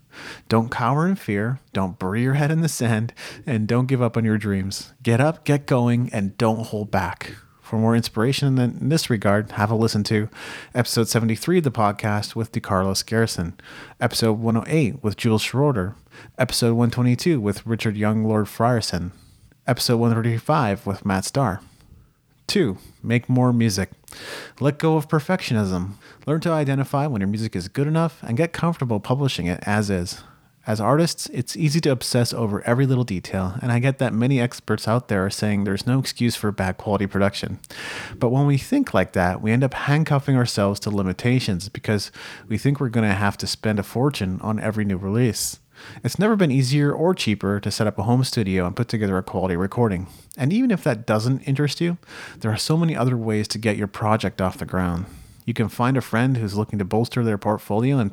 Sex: male